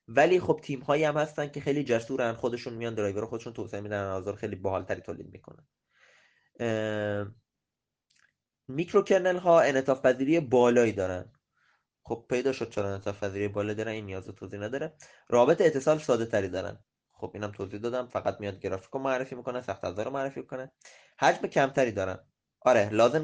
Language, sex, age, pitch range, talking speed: Persian, male, 20-39, 105-135 Hz, 165 wpm